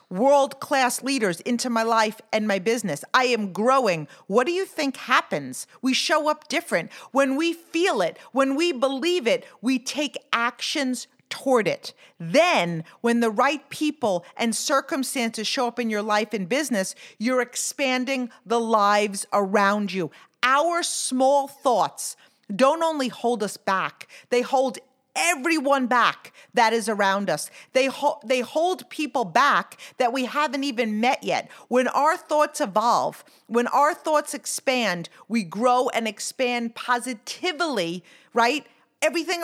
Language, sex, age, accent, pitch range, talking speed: English, female, 40-59, American, 225-280 Hz, 145 wpm